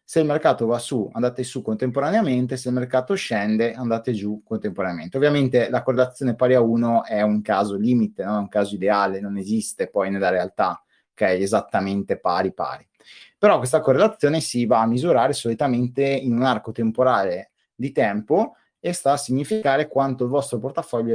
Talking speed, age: 175 wpm, 30-49